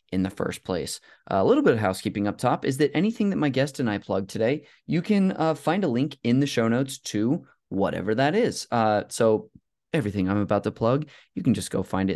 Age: 20-39